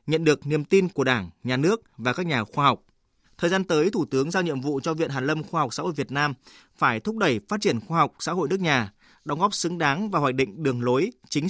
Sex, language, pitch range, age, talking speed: male, Vietnamese, 140-185 Hz, 20-39, 270 wpm